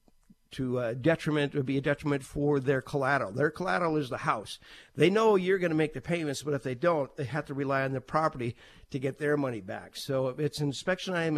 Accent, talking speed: American, 235 wpm